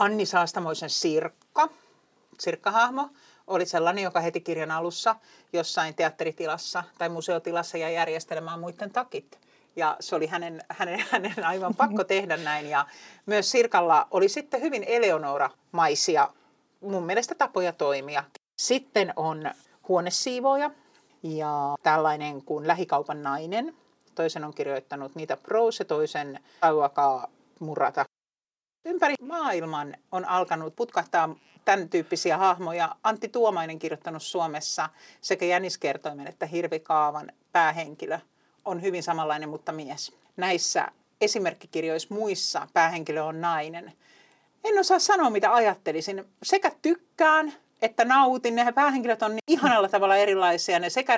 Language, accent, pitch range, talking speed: Finnish, native, 160-245 Hz, 120 wpm